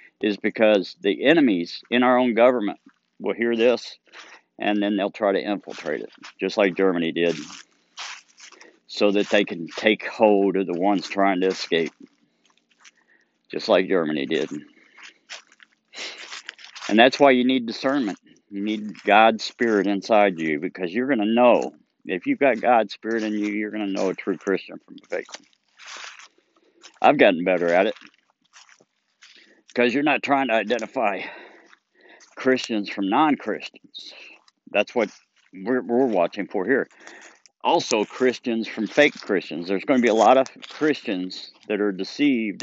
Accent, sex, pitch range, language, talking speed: American, male, 100-120 Hz, English, 155 wpm